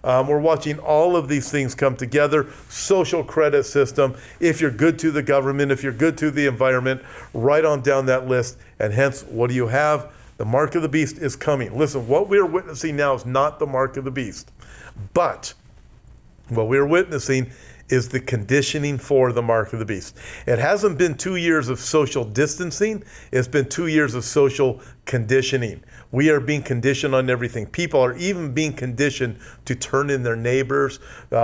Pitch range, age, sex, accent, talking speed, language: 125-150 Hz, 50-69, male, American, 190 wpm, English